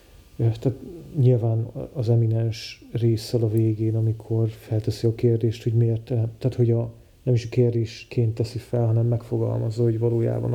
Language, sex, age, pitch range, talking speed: Hungarian, male, 40-59, 110-120 Hz, 150 wpm